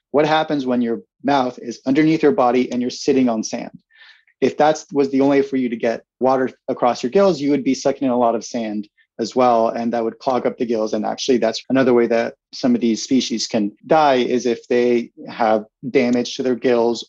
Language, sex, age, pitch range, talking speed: English, male, 30-49, 120-140 Hz, 230 wpm